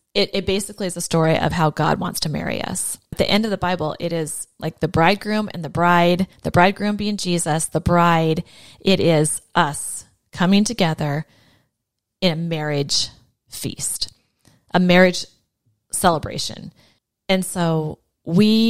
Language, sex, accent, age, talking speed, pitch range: English, female, American, 30-49, 155 wpm, 155-190 Hz